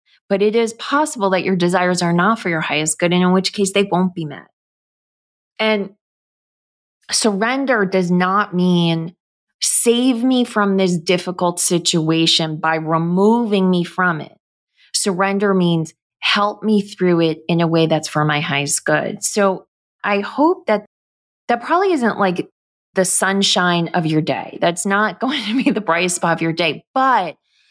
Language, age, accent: English, 20-39, American